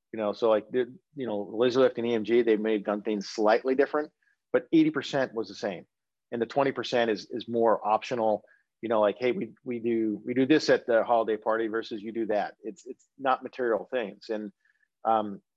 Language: English